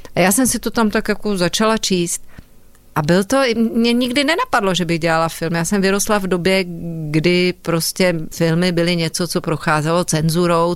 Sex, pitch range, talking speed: female, 175-230 Hz, 185 wpm